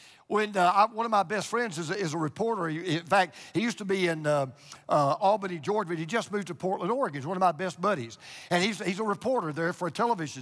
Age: 50-69